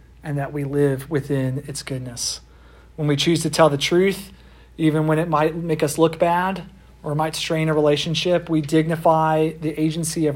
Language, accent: English, American